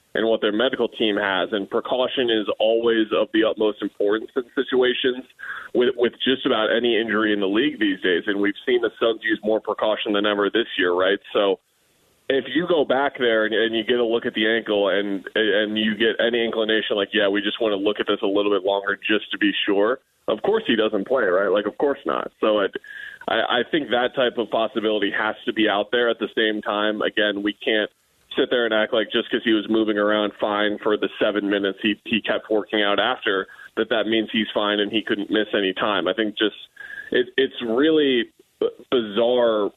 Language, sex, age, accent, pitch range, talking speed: English, male, 20-39, American, 105-125 Hz, 225 wpm